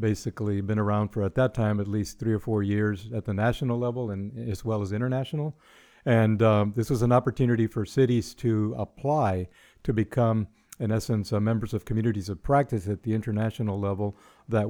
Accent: American